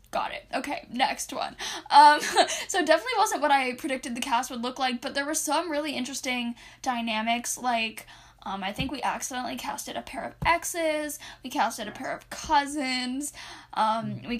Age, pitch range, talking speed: 10-29, 230-300 Hz, 180 wpm